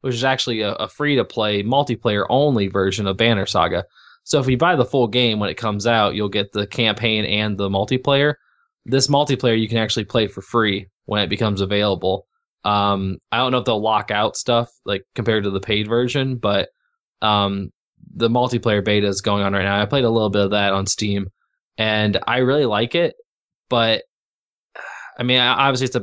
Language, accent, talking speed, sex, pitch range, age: English, American, 195 wpm, male, 100-125 Hz, 20-39